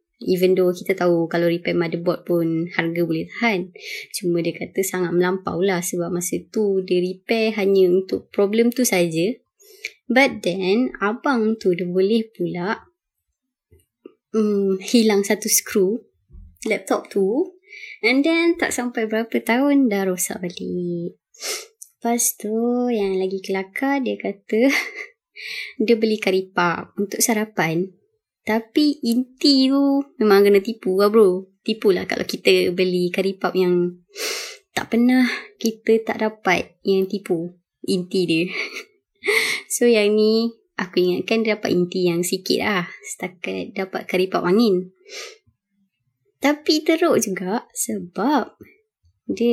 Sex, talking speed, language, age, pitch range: male, 125 wpm, Malay, 20-39, 185-250 Hz